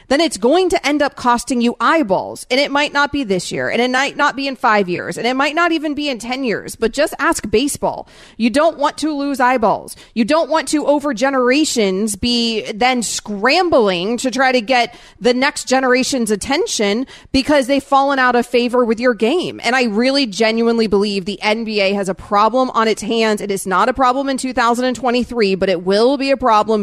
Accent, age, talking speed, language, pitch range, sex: American, 30-49, 210 wpm, English, 200-265 Hz, female